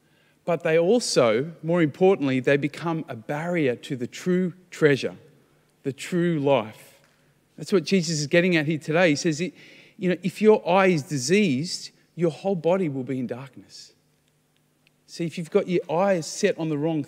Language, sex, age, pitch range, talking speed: English, male, 40-59, 145-180 Hz, 180 wpm